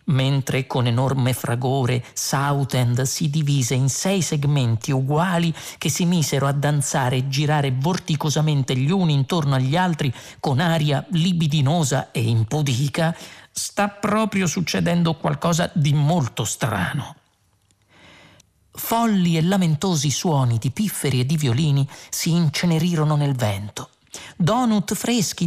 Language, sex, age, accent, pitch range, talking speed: Italian, male, 50-69, native, 130-185 Hz, 120 wpm